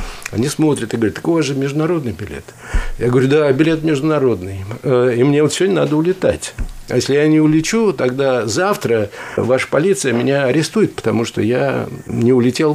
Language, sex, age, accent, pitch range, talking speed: Russian, male, 60-79, native, 120-150 Hz, 165 wpm